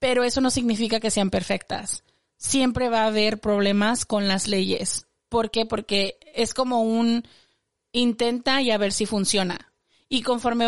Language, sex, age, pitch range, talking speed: Spanish, female, 30-49, 205-235 Hz, 165 wpm